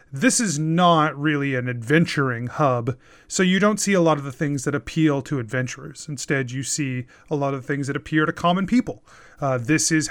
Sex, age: male, 30-49